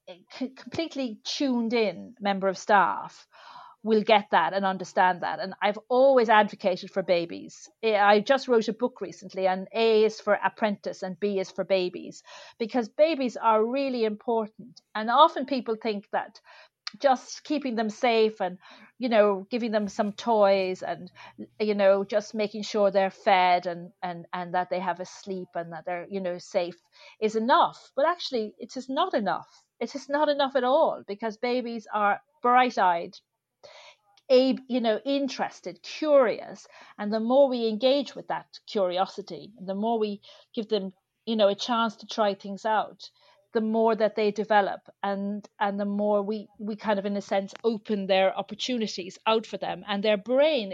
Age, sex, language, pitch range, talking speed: 40-59, female, English, 195-245 Hz, 170 wpm